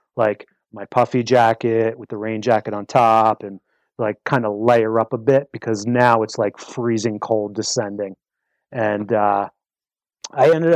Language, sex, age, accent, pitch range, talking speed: English, male, 30-49, American, 115-145 Hz, 160 wpm